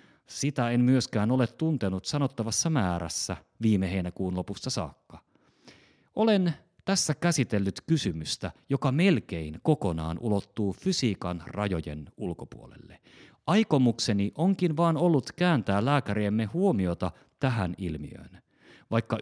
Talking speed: 100 wpm